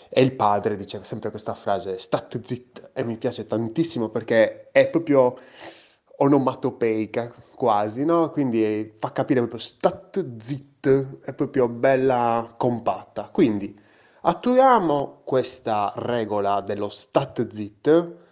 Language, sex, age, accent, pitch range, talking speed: Italian, male, 20-39, native, 110-145 Hz, 120 wpm